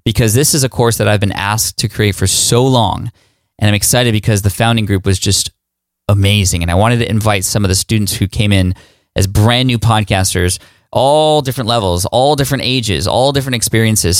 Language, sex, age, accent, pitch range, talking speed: English, male, 20-39, American, 100-120 Hz, 205 wpm